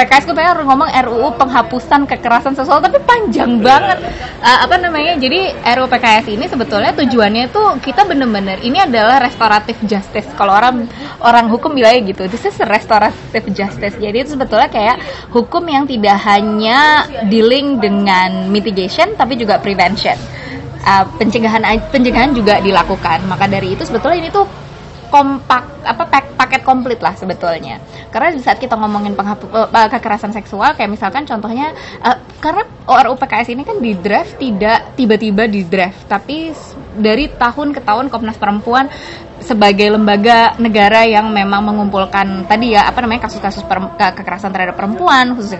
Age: 20-39